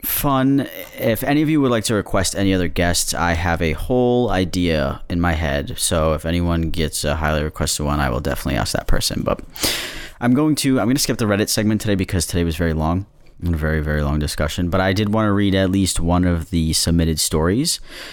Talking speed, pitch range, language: 230 wpm, 80-105 Hz, English